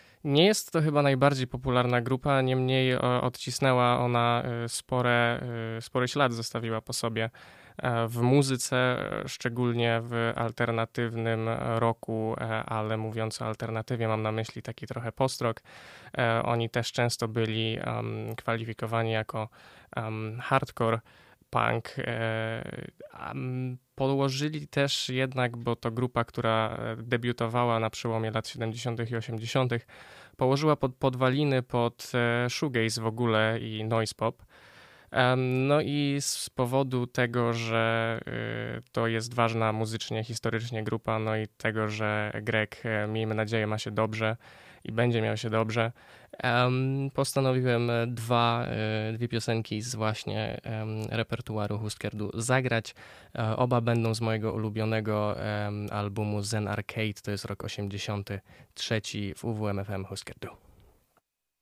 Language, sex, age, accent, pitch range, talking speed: Polish, male, 20-39, native, 110-125 Hz, 115 wpm